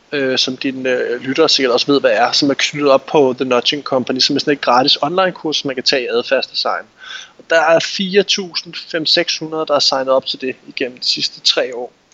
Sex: male